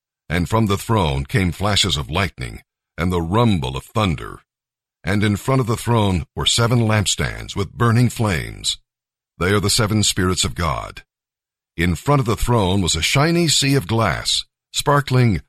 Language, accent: English, American